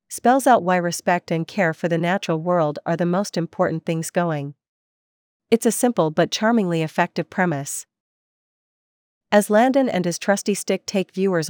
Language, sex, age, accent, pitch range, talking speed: English, female, 40-59, American, 165-200 Hz, 160 wpm